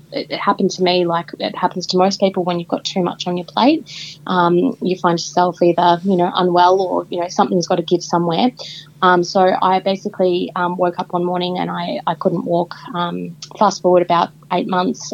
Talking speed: 215 wpm